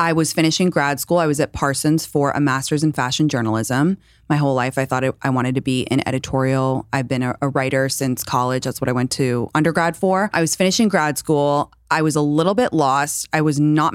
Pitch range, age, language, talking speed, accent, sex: 135-165 Hz, 20-39, English, 230 wpm, American, female